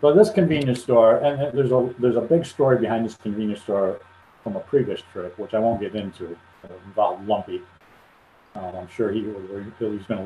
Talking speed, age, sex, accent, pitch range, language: 200 wpm, 50-69, male, American, 105-130 Hz, English